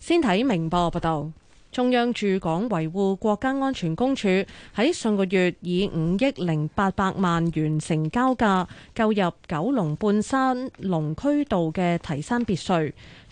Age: 30-49